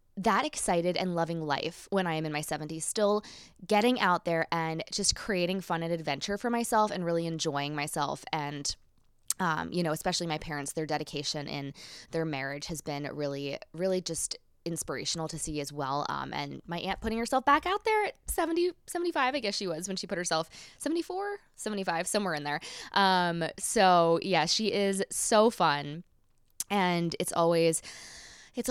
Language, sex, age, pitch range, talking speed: English, female, 20-39, 155-200 Hz, 180 wpm